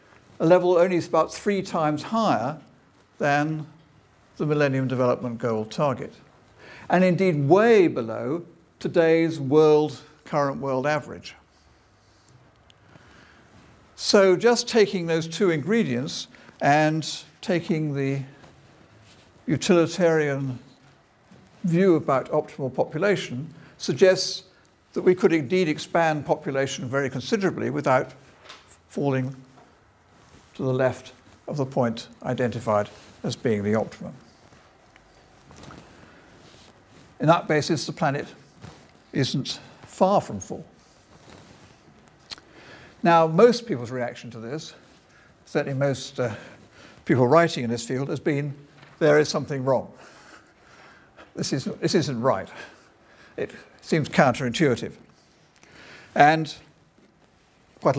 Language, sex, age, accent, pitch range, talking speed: English, male, 60-79, British, 130-165 Hz, 100 wpm